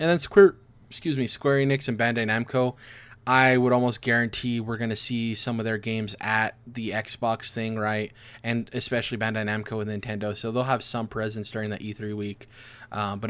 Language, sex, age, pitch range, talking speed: English, male, 20-39, 110-130 Hz, 200 wpm